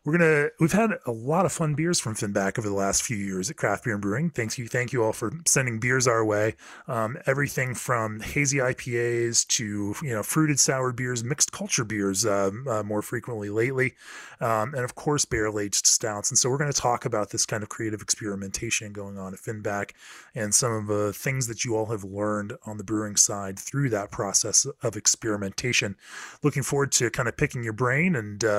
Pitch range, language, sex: 105-140 Hz, English, male